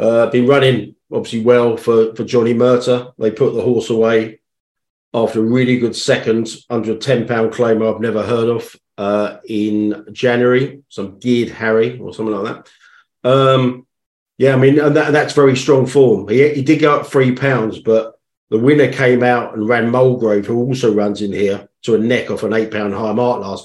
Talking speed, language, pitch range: 190 wpm, English, 110-130 Hz